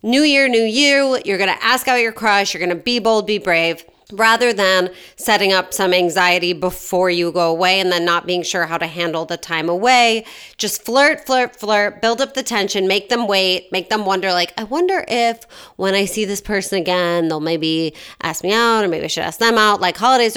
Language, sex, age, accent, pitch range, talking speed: English, female, 30-49, American, 175-225 Hz, 225 wpm